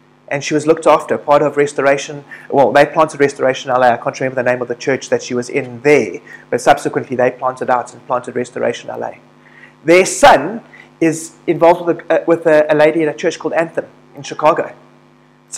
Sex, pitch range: male, 140-170 Hz